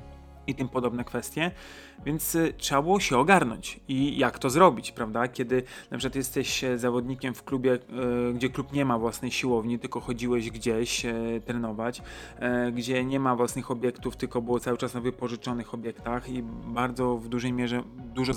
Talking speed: 160 wpm